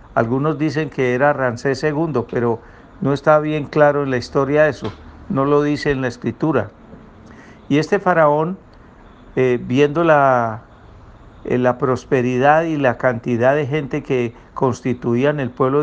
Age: 60-79